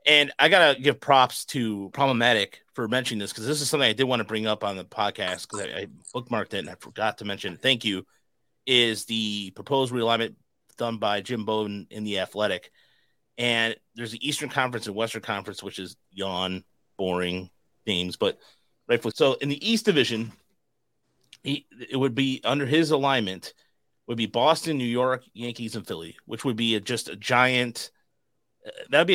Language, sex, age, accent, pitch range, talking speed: English, male, 30-49, American, 110-140 Hz, 185 wpm